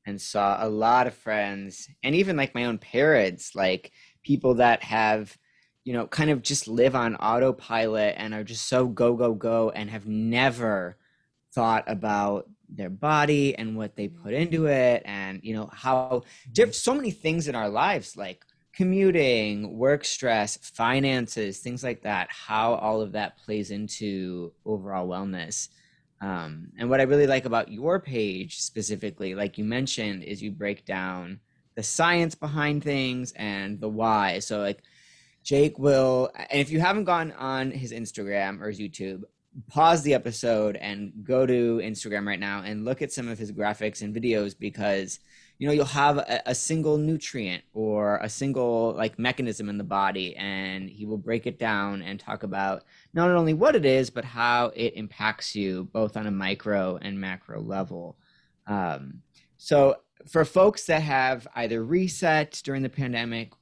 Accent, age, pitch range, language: American, 20-39, 105-135 Hz, English